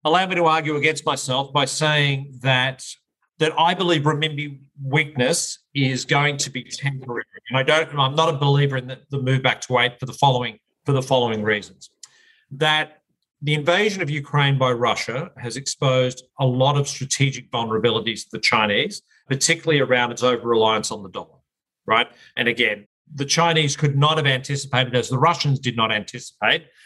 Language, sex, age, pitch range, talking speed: English, male, 40-59, 125-155 Hz, 180 wpm